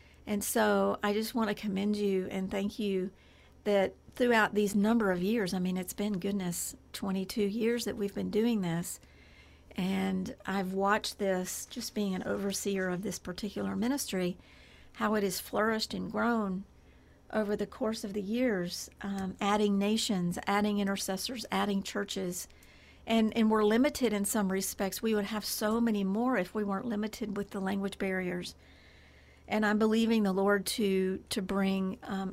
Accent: American